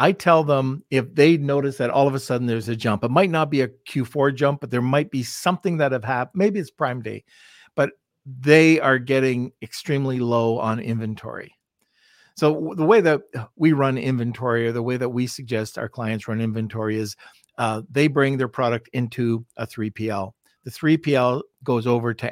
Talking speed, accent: 195 wpm, American